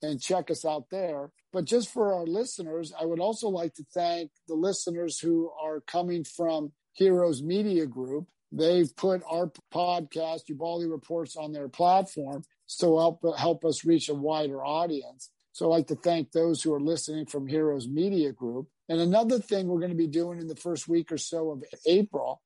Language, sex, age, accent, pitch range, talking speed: English, male, 50-69, American, 150-175 Hz, 185 wpm